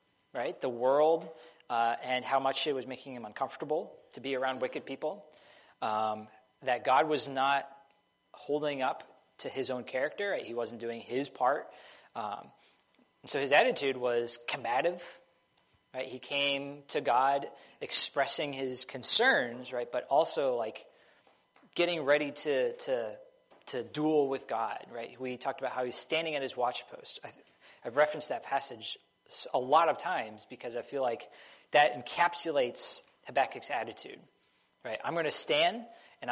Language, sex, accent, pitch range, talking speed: English, male, American, 125-155 Hz, 155 wpm